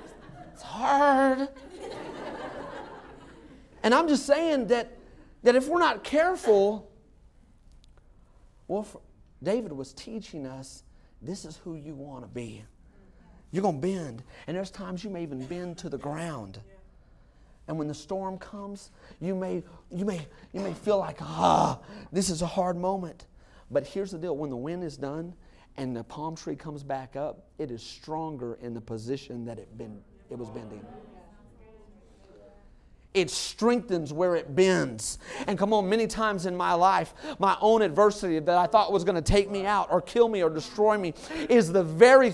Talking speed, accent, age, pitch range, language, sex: 165 wpm, American, 40-59, 160-220 Hz, English, male